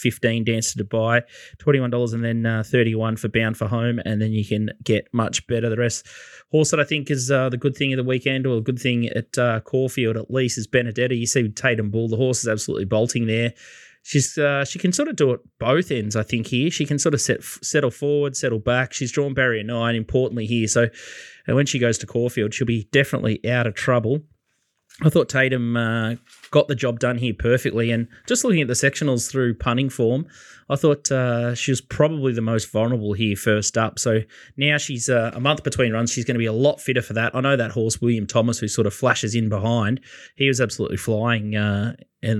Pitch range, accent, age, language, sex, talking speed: 110-135 Hz, Australian, 20-39, English, male, 230 wpm